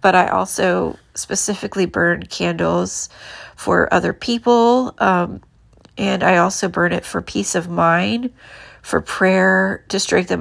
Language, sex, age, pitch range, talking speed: English, female, 30-49, 185-230 Hz, 135 wpm